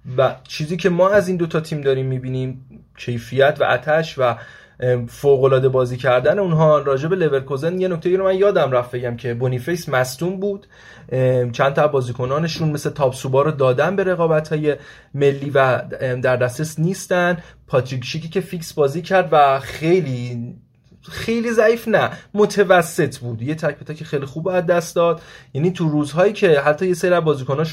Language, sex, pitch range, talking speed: Persian, male, 130-165 Hz, 165 wpm